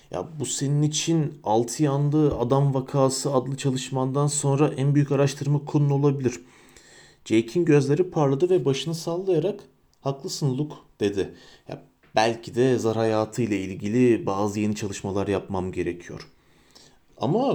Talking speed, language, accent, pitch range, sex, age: 130 wpm, Turkish, native, 110-155 Hz, male, 40-59